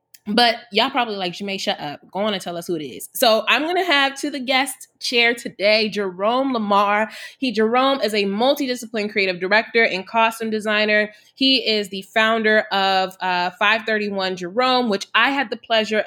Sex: female